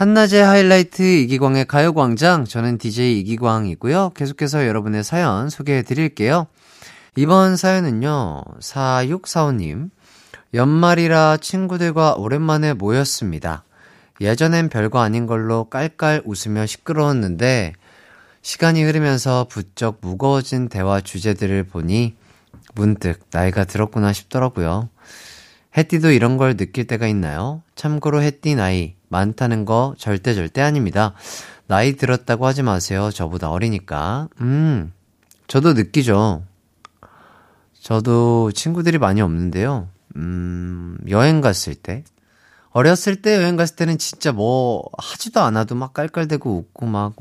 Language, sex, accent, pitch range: Korean, male, native, 95-150 Hz